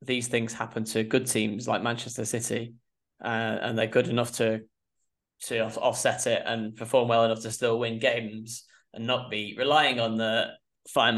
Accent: British